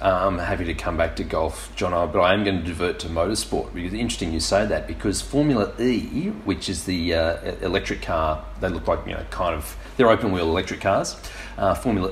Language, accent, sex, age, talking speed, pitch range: English, Australian, male, 30-49, 225 wpm, 95-115 Hz